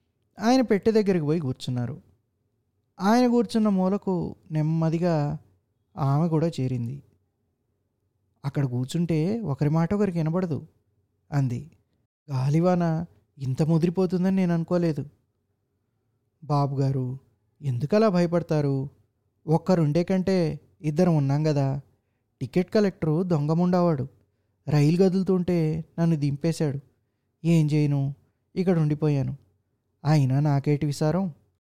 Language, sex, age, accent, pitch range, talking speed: Telugu, male, 20-39, native, 120-170 Hz, 90 wpm